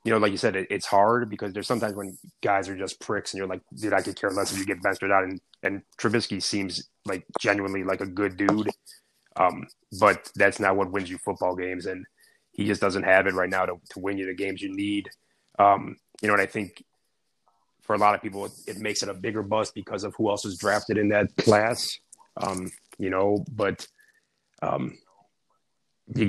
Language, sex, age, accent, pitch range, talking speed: English, male, 30-49, American, 95-105 Hz, 220 wpm